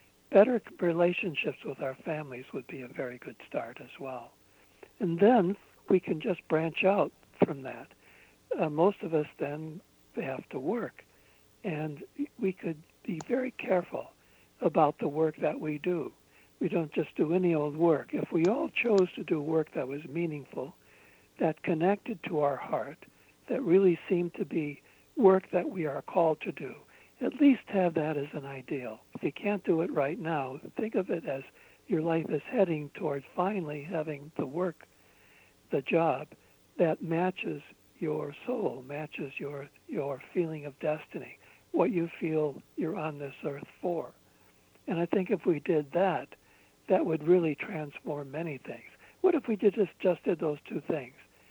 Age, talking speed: 60-79, 170 wpm